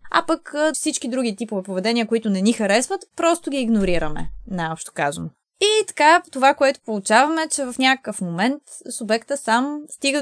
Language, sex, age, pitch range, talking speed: Bulgarian, female, 20-39, 205-270 Hz, 160 wpm